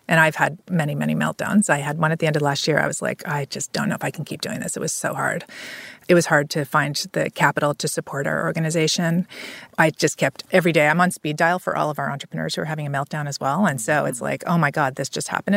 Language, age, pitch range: English, 30-49, 150-190 Hz